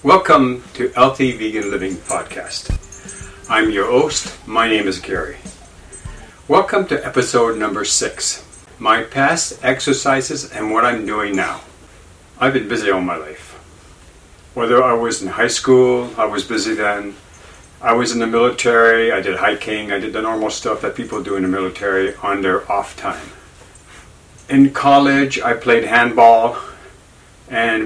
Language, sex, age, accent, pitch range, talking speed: English, male, 60-79, American, 100-130 Hz, 155 wpm